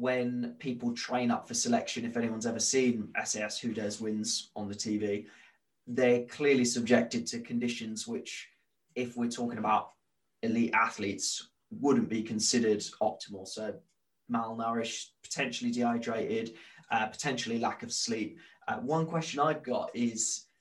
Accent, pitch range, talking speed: British, 115-130 Hz, 140 wpm